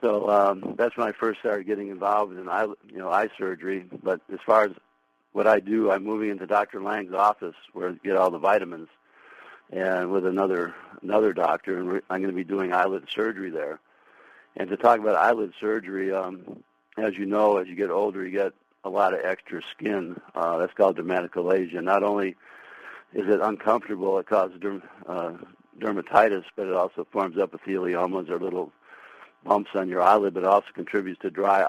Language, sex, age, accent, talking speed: English, male, 60-79, American, 185 wpm